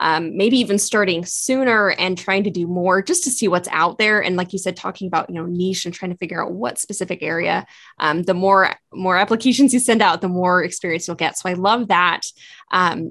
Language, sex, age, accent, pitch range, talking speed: English, female, 10-29, American, 180-225 Hz, 235 wpm